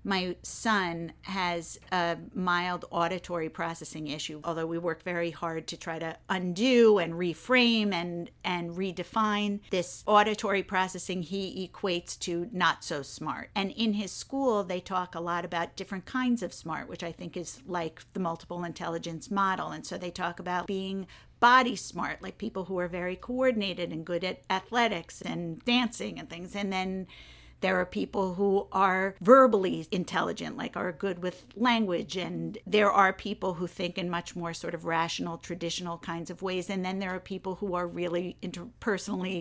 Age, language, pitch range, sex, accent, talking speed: 50-69, English, 175-205 Hz, female, American, 175 wpm